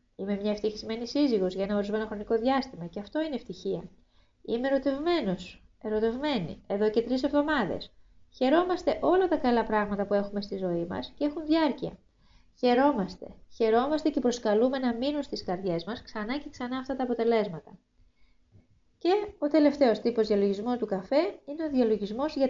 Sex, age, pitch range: female, 20-39, 200-270 Hz